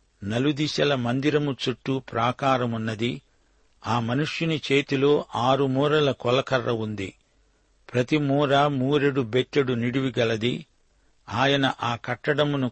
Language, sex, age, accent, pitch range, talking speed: Telugu, male, 50-69, native, 120-140 Hz, 90 wpm